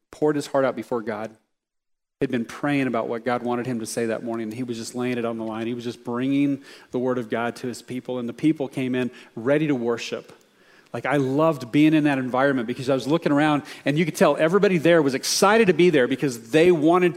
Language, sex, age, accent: English, male, 40-59, American